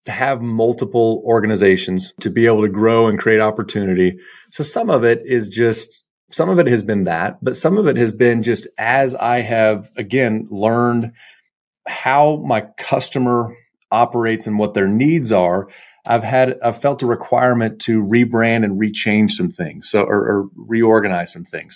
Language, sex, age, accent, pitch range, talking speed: English, male, 30-49, American, 100-120 Hz, 175 wpm